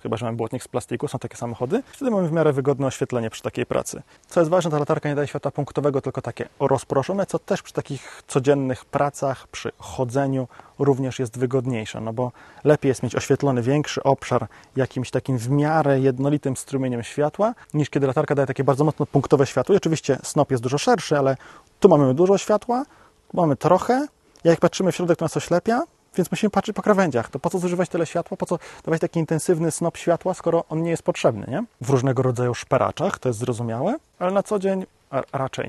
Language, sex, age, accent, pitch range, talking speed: Polish, male, 20-39, native, 135-170 Hz, 205 wpm